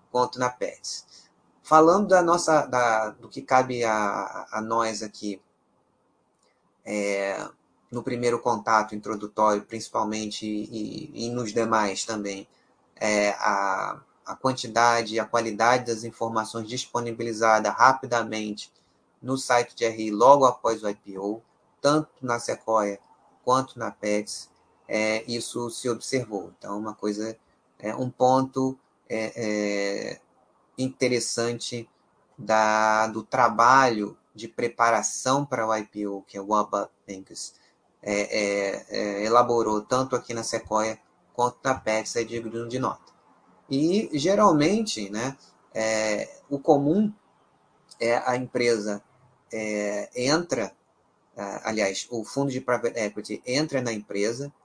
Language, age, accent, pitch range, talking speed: Portuguese, 20-39, Brazilian, 105-125 Hz, 120 wpm